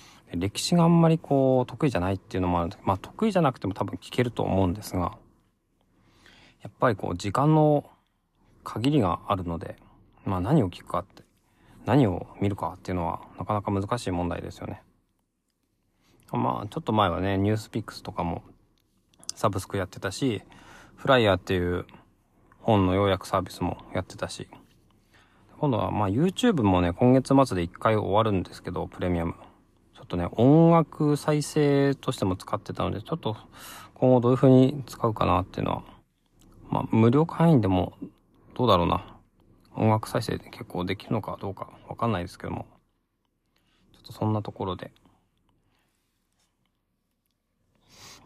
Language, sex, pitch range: Japanese, male, 90-130 Hz